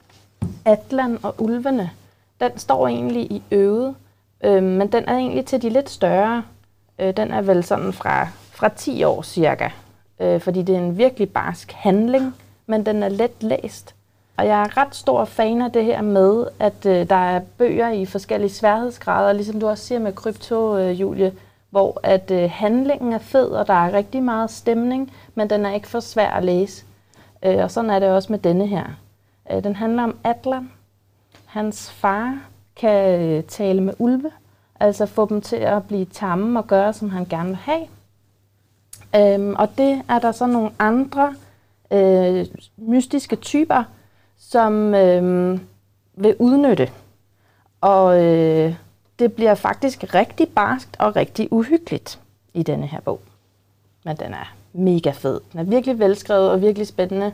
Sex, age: female, 30-49